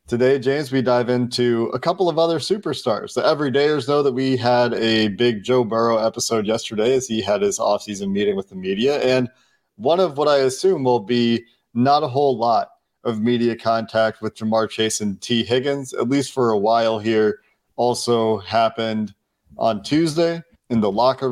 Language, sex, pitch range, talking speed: English, male, 115-135 Hz, 185 wpm